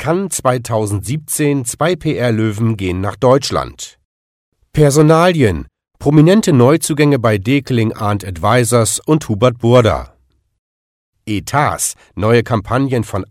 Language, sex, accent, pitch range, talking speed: German, male, German, 100-145 Hz, 90 wpm